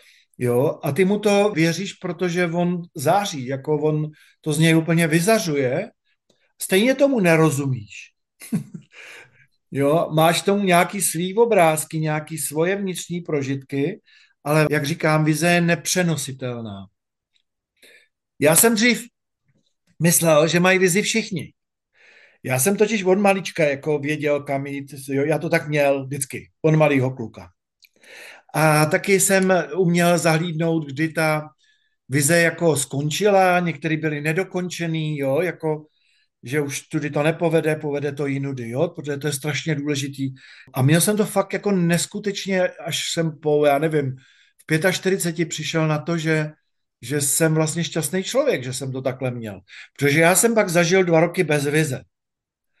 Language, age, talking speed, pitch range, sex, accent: Czech, 50-69, 145 wpm, 145-180 Hz, male, native